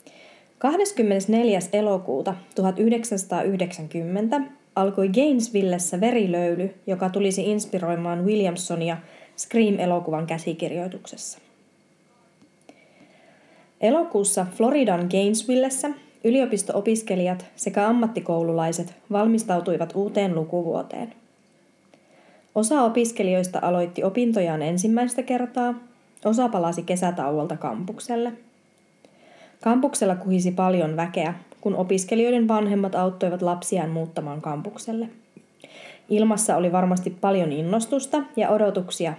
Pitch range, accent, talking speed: 175-225 Hz, native, 75 wpm